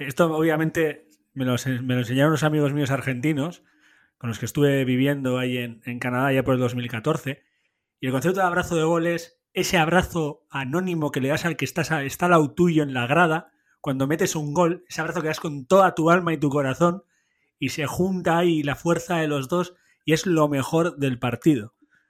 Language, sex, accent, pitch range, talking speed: Spanish, male, Spanish, 130-165 Hz, 210 wpm